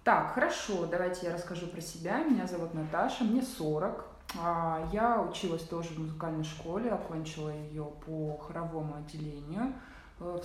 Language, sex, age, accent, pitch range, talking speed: Russian, female, 20-39, native, 160-195 Hz, 140 wpm